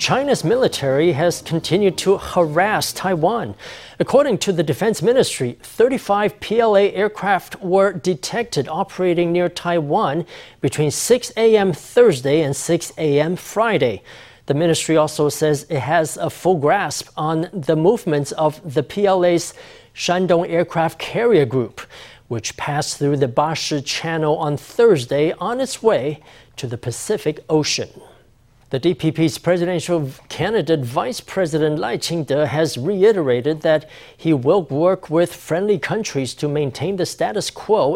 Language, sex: English, male